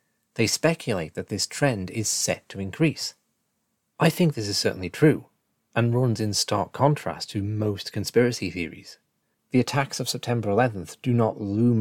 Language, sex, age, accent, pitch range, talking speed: English, male, 30-49, British, 100-130 Hz, 165 wpm